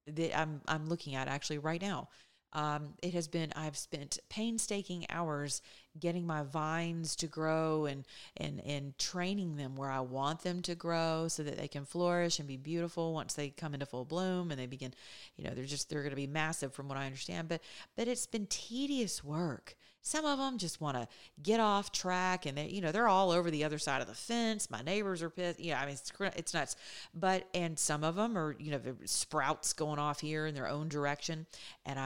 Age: 40-59